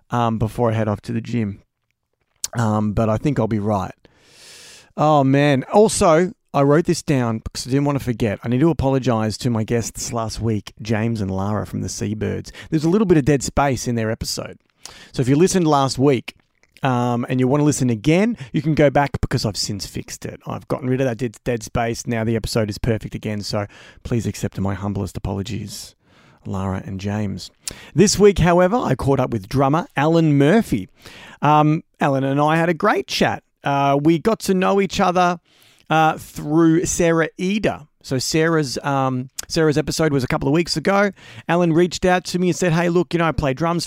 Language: English